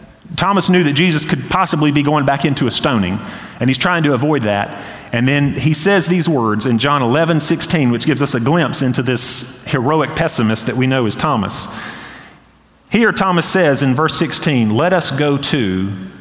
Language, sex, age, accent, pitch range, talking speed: English, male, 40-59, American, 115-160 Hz, 195 wpm